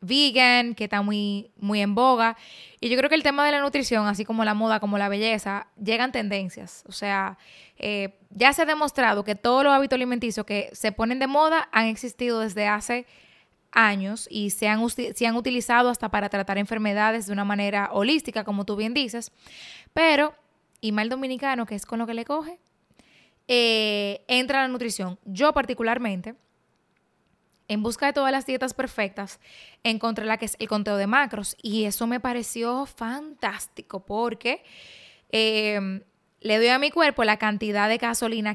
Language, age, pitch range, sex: Spanish, 20-39, 210-265 Hz, female